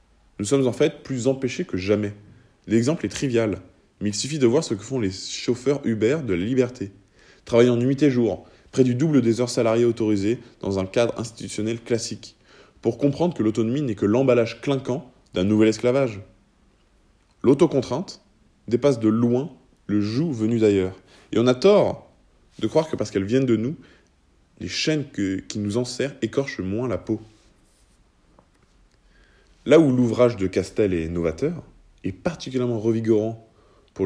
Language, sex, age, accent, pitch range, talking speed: French, male, 20-39, French, 100-130 Hz, 165 wpm